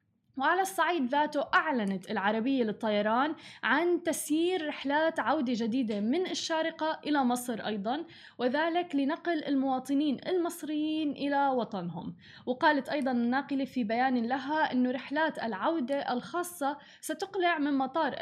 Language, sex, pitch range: Arabic, female, 230-295 Hz